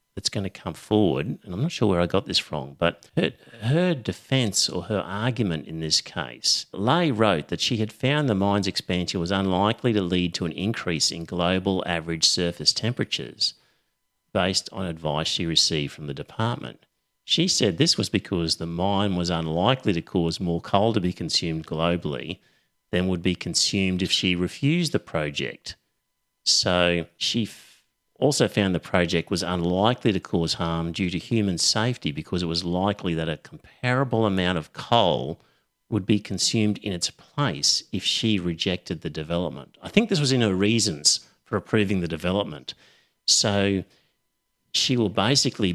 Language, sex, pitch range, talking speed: English, male, 85-110 Hz, 170 wpm